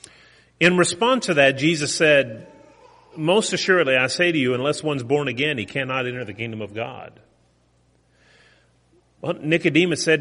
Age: 40-59